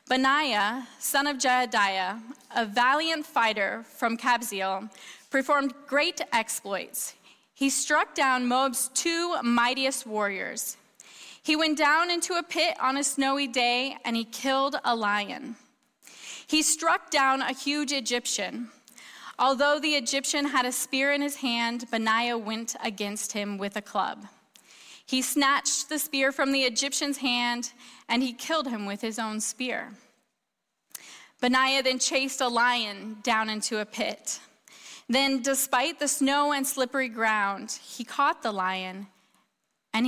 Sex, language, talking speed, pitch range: female, English, 140 wpm, 230-280 Hz